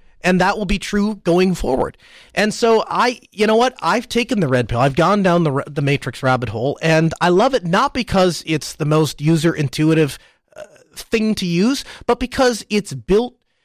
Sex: male